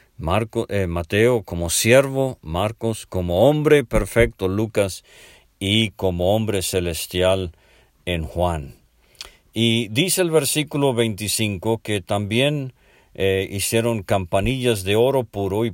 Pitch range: 95-130 Hz